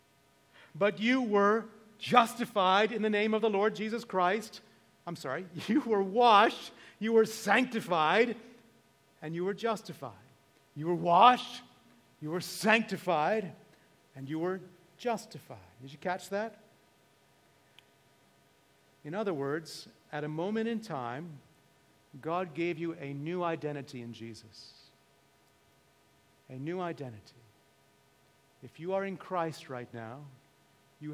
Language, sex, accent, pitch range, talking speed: English, male, American, 135-180 Hz, 125 wpm